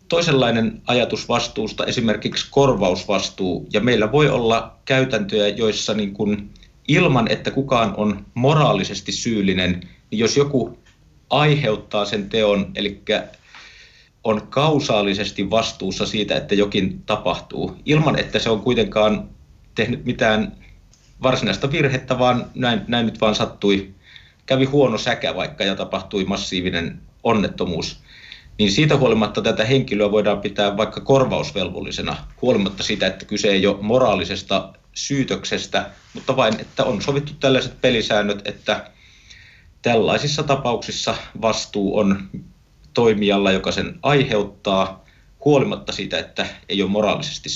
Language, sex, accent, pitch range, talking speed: Finnish, male, native, 100-125 Hz, 115 wpm